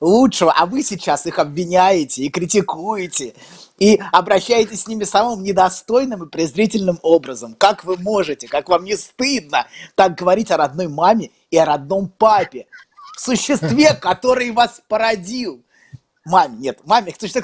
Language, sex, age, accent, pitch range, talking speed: Russian, male, 20-39, native, 180-230 Hz, 145 wpm